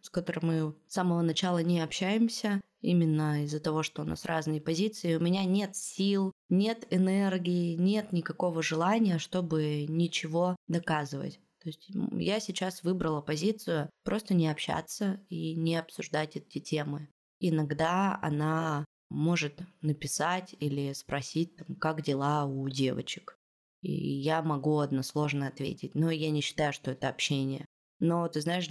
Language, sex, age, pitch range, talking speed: Russian, female, 20-39, 150-180 Hz, 140 wpm